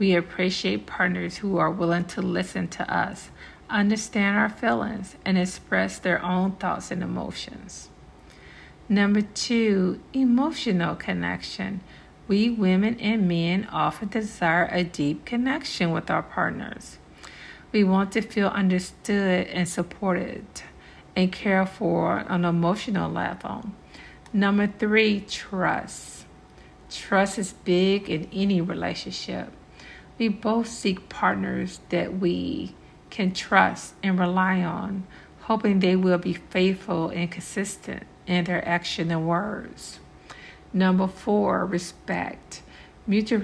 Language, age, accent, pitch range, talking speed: English, 50-69, American, 175-205 Hz, 120 wpm